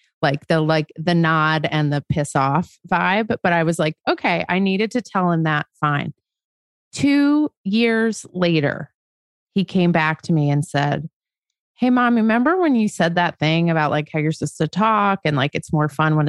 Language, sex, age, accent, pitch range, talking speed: English, female, 30-49, American, 160-205 Hz, 195 wpm